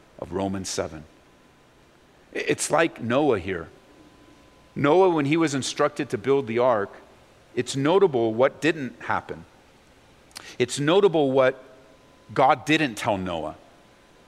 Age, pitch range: 50-69, 155-225 Hz